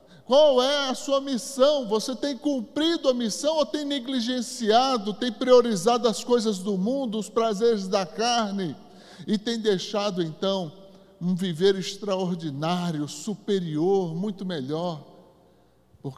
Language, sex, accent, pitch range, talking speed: Portuguese, male, Brazilian, 175-235 Hz, 125 wpm